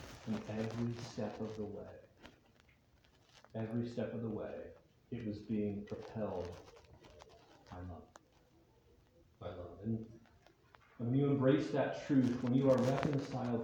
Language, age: English, 40-59